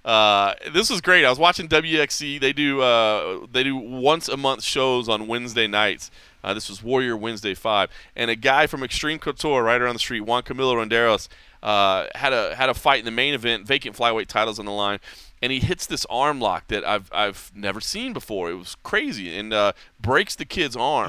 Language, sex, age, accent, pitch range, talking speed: English, male, 30-49, American, 110-155 Hz, 215 wpm